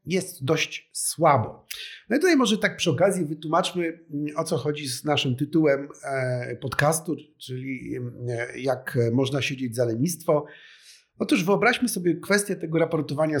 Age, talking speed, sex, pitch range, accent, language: 50-69, 135 wpm, male, 135-180 Hz, native, Polish